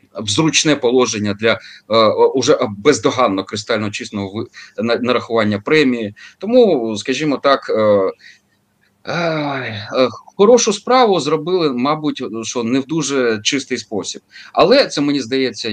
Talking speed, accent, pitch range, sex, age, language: 110 wpm, native, 105-140 Hz, male, 30-49, Ukrainian